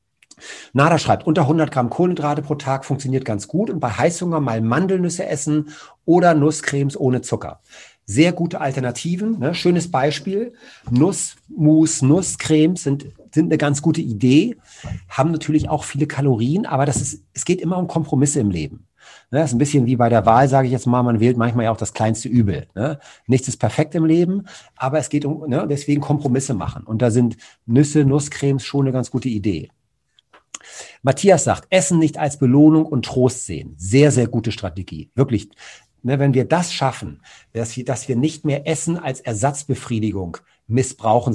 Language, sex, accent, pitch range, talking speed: German, male, German, 120-155 Hz, 175 wpm